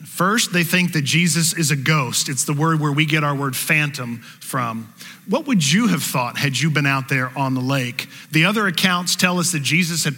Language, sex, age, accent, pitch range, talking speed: English, male, 40-59, American, 140-175 Hz, 230 wpm